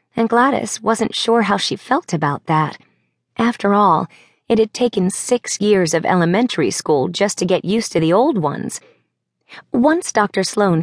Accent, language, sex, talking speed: American, English, female, 165 wpm